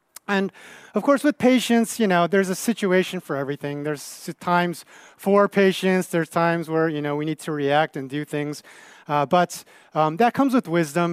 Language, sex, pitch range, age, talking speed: English, male, 145-195 Hz, 40-59, 190 wpm